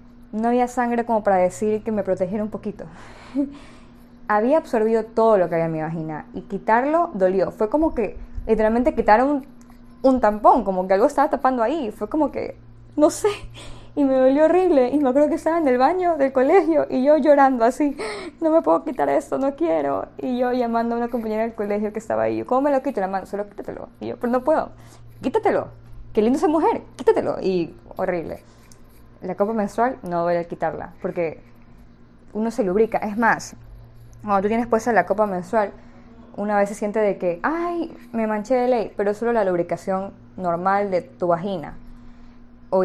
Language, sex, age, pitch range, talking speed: Spanish, female, 20-39, 175-245 Hz, 195 wpm